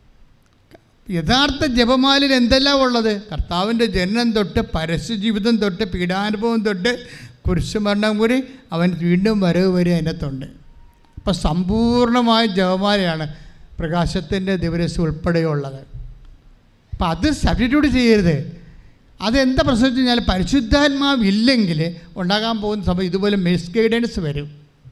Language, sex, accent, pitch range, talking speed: English, male, Indian, 175-250 Hz, 80 wpm